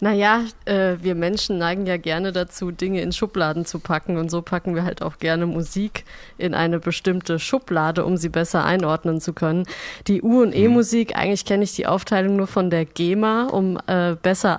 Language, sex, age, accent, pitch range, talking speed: German, female, 20-39, German, 175-200 Hz, 195 wpm